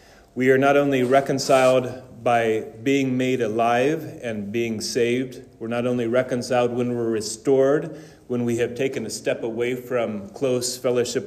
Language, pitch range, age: English, 115-130 Hz, 40-59